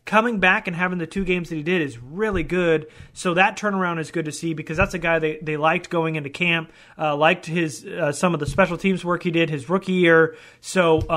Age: 30-49